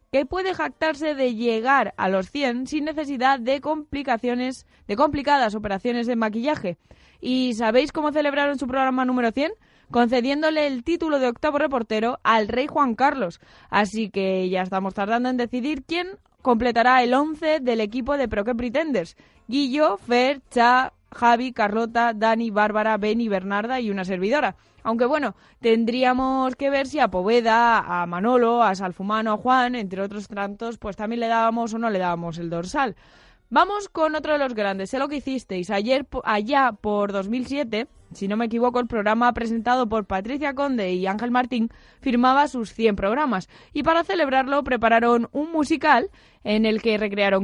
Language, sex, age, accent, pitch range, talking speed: Spanish, female, 20-39, Spanish, 215-275 Hz, 165 wpm